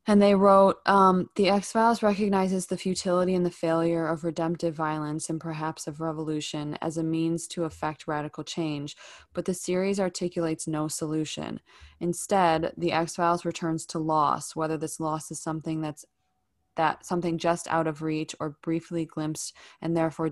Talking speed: 160 wpm